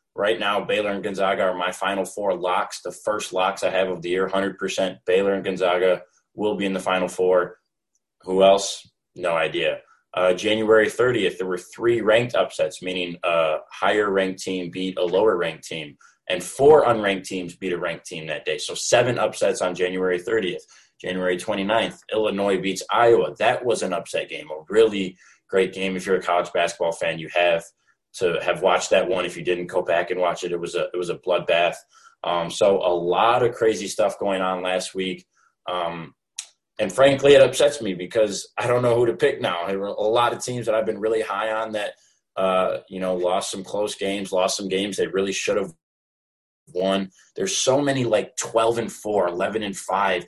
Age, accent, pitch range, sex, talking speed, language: 20-39, American, 90-110 Hz, male, 200 wpm, English